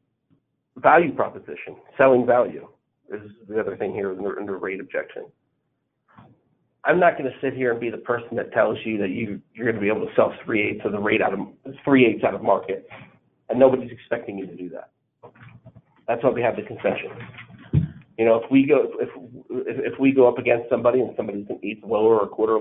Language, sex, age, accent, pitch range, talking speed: English, male, 40-59, American, 115-170 Hz, 215 wpm